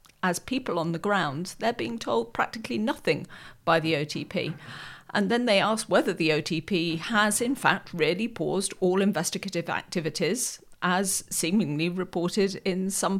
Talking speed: 150 wpm